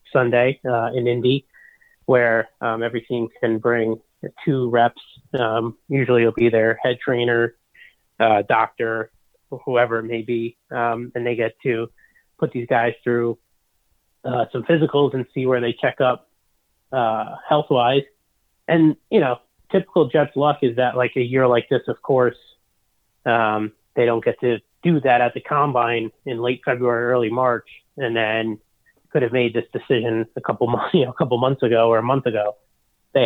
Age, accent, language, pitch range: 30-49, American, English, 115-130 Hz